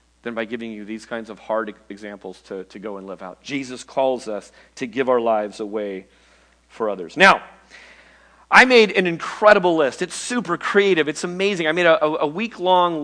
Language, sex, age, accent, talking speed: English, male, 40-59, American, 190 wpm